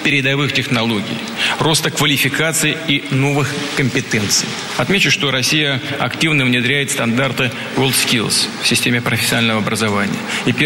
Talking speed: 105 wpm